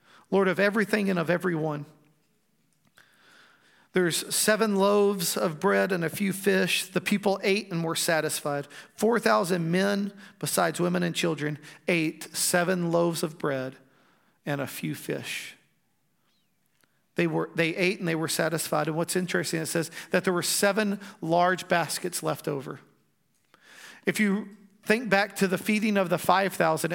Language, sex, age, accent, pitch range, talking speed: English, male, 40-59, American, 170-205 Hz, 145 wpm